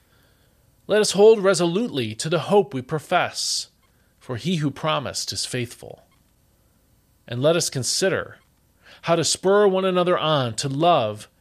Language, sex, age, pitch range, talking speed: English, male, 40-59, 120-175 Hz, 140 wpm